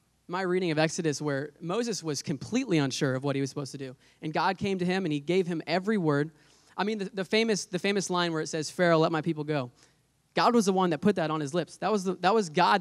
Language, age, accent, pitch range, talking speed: English, 20-39, American, 145-175 Hz, 275 wpm